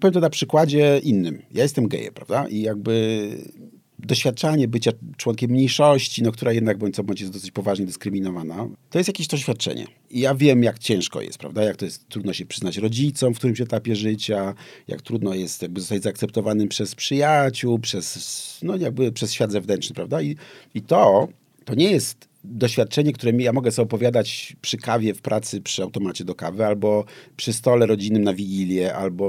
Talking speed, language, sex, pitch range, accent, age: 185 wpm, Polish, male, 105-140 Hz, native, 40-59